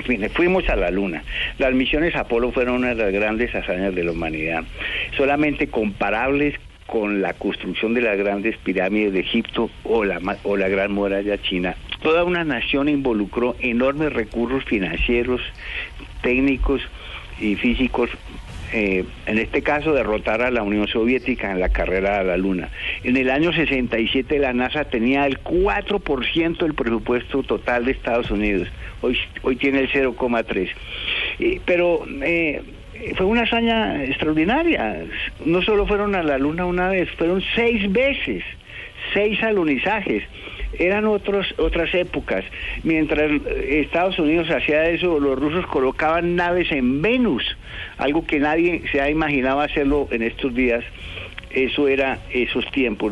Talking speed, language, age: 150 wpm, English, 60-79